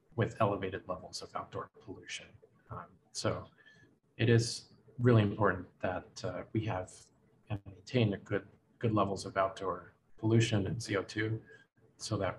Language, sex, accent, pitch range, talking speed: English, male, American, 100-120 Hz, 140 wpm